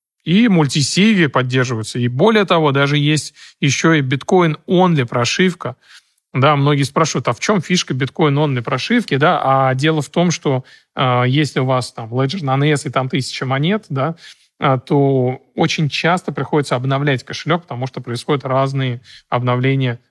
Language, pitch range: Russian, 130-160 Hz